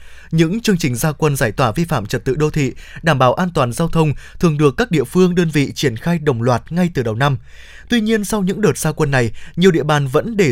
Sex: male